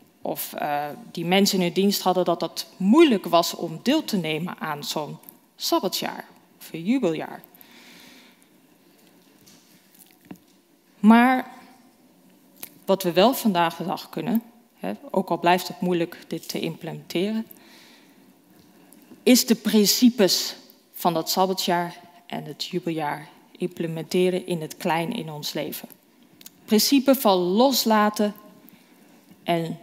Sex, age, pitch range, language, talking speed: female, 20-39, 180-245 Hz, Dutch, 115 wpm